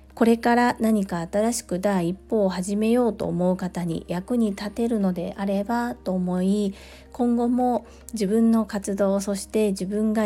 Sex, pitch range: female, 185-235 Hz